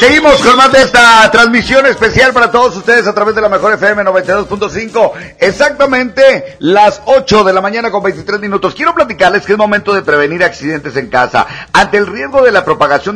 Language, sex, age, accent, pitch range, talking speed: Spanish, male, 50-69, Mexican, 150-205 Hz, 190 wpm